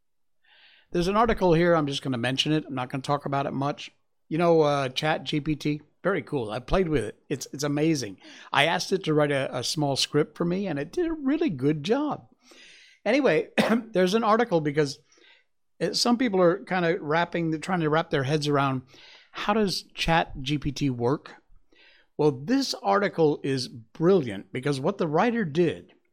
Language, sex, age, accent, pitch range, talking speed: English, male, 60-79, American, 135-185 Hz, 185 wpm